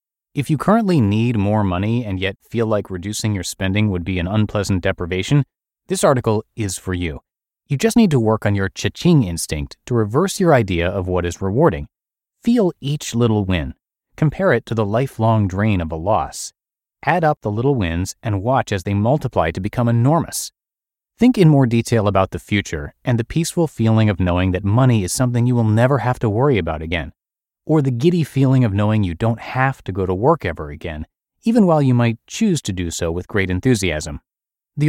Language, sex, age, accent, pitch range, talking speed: English, male, 30-49, American, 95-140 Hz, 205 wpm